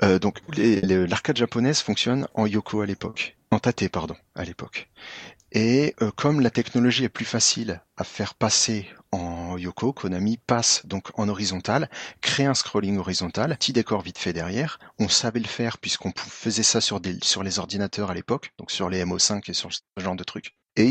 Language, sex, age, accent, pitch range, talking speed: French, male, 40-59, French, 95-120 Hz, 185 wpm